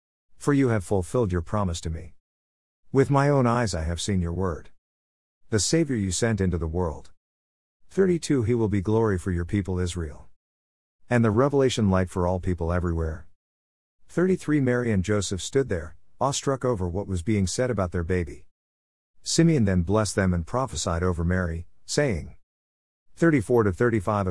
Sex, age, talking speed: male, 50-69, 165 wpm